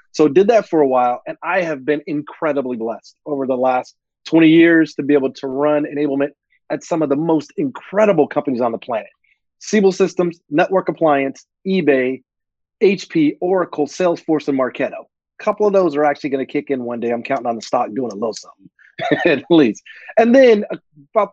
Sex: male